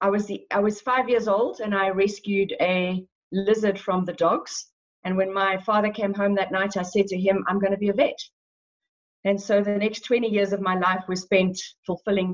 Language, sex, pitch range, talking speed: English, female, 185-225 Hz, 210 wpm